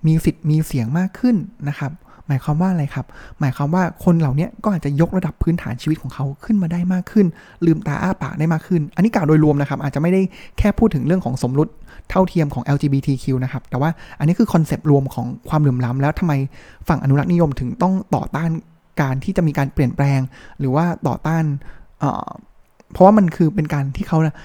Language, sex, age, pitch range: Thai, male, 20-39, 140-175 Hz